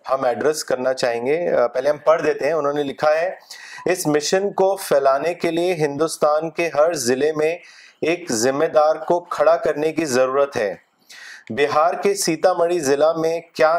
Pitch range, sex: 140-165 Hz, male